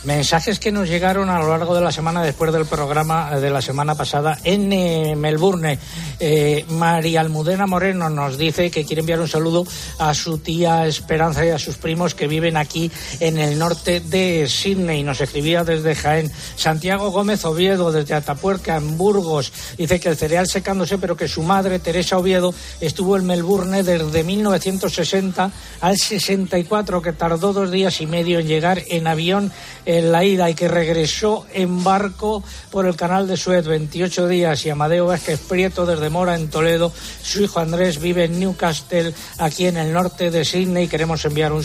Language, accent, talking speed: Spanish, Spanish, 180 wpm